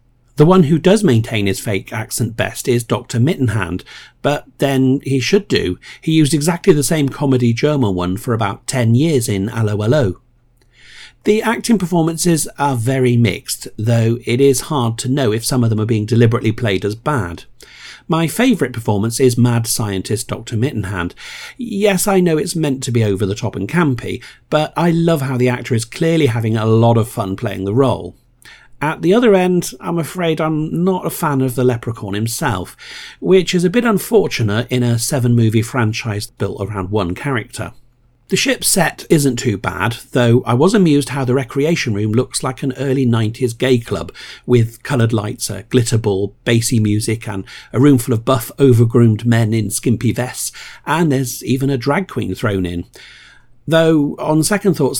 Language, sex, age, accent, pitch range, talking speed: English, male, 50-69, British, 115-145 Hz, 185 wpm